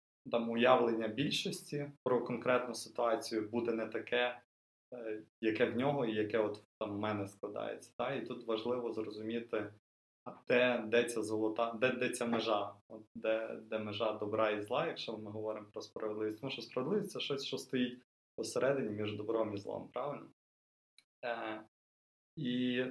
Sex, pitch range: male, 105-120 Hz